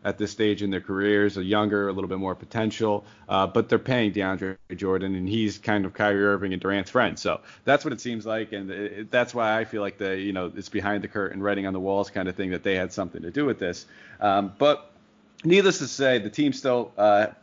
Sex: male